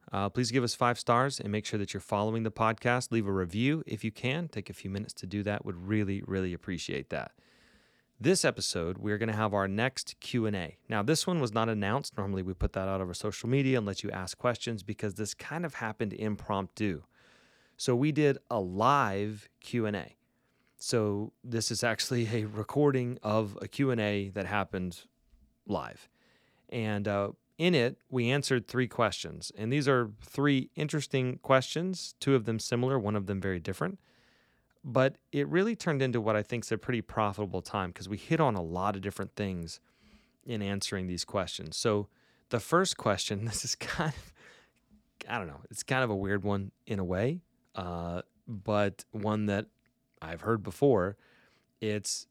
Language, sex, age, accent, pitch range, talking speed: English, male, 30-49, American, 100-125 Hz, 185 wpm